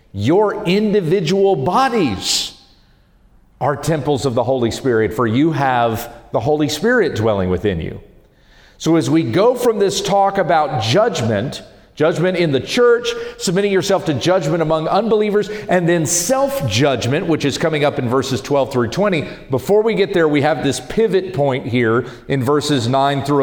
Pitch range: 120-180 Hz